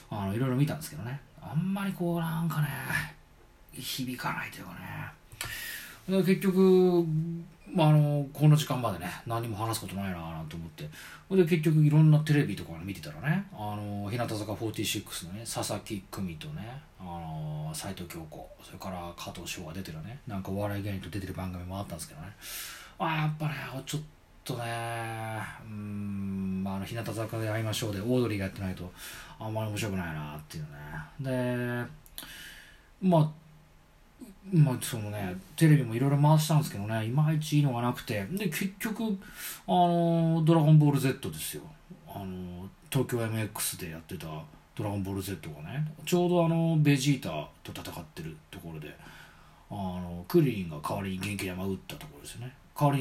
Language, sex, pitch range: Japanese, male, 95-155 Hz